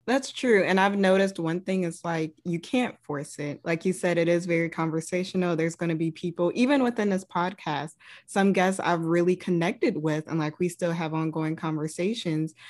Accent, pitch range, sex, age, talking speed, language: American, 155-190 Hz, female, 20-39, 200 wpm, English